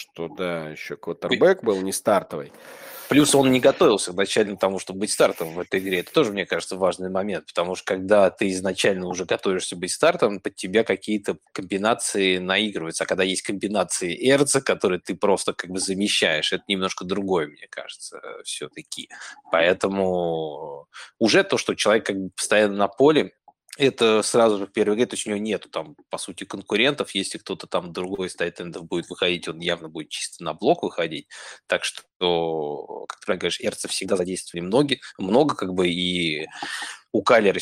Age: 20-39